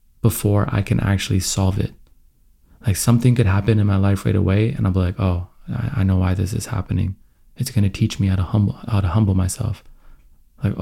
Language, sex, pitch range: English, male, 95-110 Hz